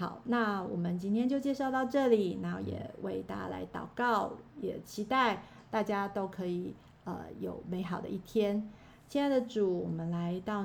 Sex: female